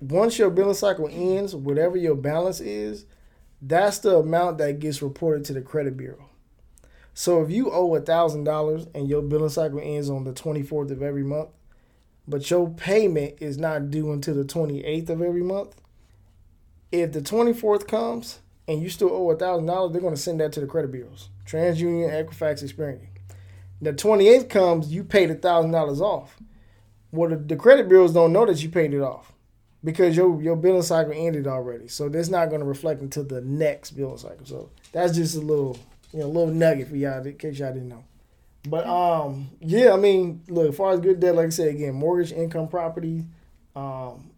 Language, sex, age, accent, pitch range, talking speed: English, male, 20-39, American, 140-170 Hz, 190 wpm